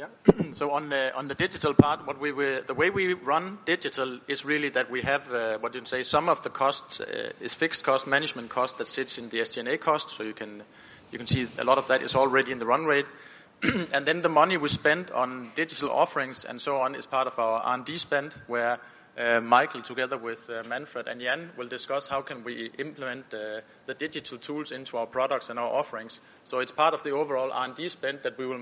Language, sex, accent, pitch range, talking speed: English, male, Danish, 120-140 Hz, 235 wpm